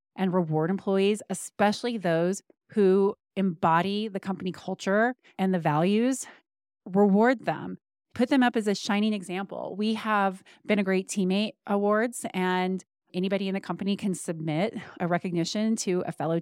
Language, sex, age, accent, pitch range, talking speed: English, female, 30-49, American, 180-225 Hz, 150 wpm